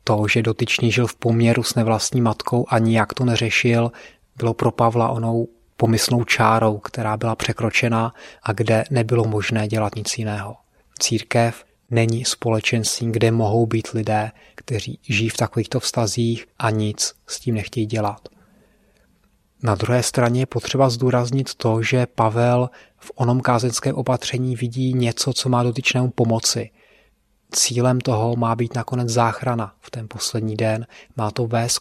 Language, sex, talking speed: Czech, male, 150 wpm